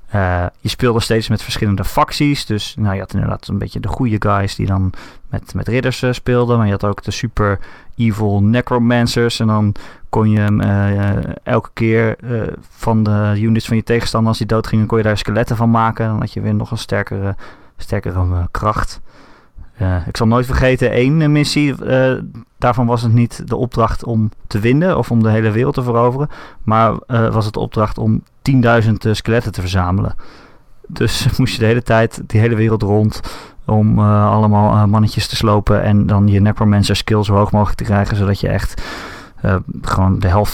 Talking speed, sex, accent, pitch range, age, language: 205 wpm, male, Dutch, 100-115 Hz, 20-39, Dutch